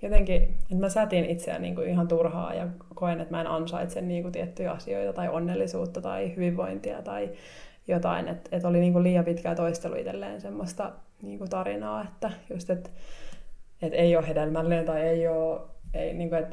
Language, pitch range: Finnish, 165-185 Hz